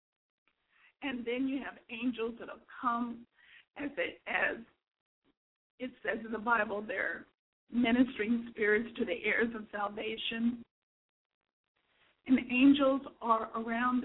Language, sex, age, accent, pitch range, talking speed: English, female, 50-69, American, 230-270 Hz, 120 wpm